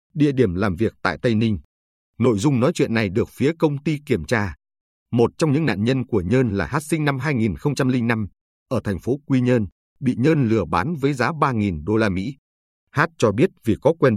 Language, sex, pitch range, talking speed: Vietnamese, male, 95-140 Hz, 215 wpm